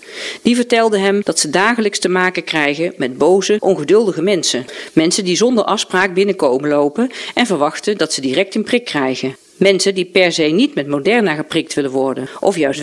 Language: Dutch